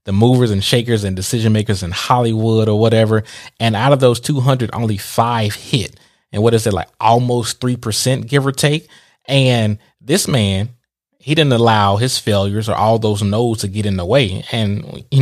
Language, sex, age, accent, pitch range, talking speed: English, male, 20-39, American, 105-130 Hz, 190 wpm